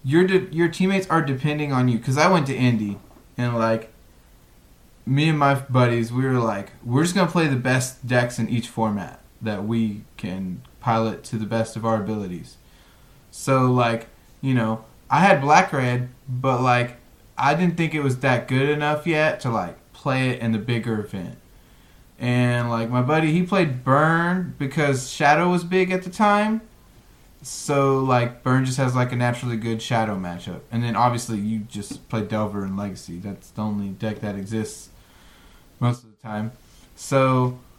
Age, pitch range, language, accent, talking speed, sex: 20-39, 115-150 Hz, English, American, 185 wpm, male